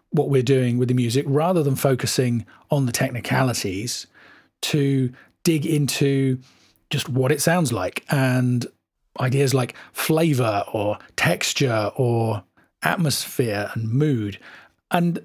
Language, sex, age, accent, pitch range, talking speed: English, male, 40-59, British, 125-145 Hz, 120 wpm